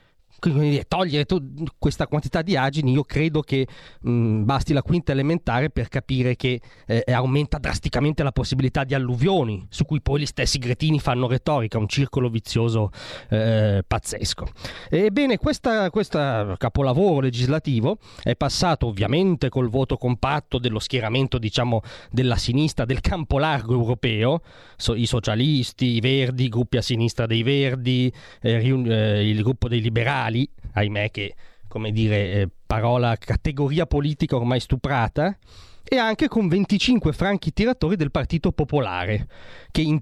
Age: 30-49